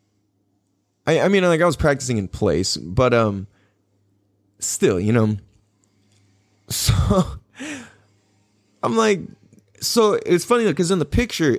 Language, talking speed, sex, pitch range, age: English, 120 wpm, male, 105-170 Hz, 20-39